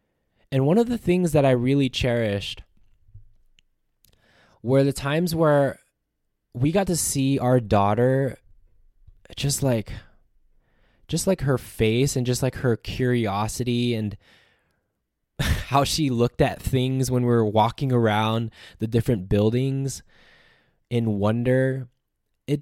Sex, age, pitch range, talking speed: male, 10-29, 105-135 Hz, 125 wpm